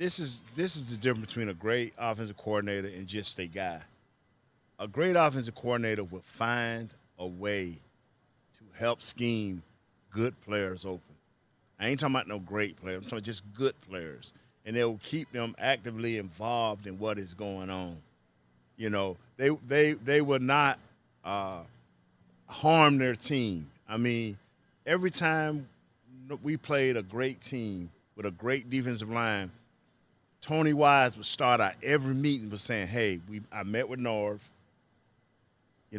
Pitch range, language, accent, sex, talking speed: 105-145 Hz, English, American, male, 155 wpm